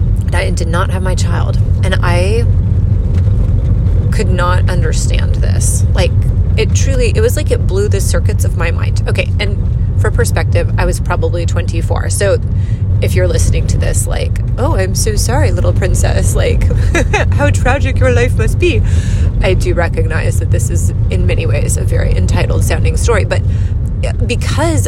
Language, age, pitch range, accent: English, 30-49, 95-100 Hz, American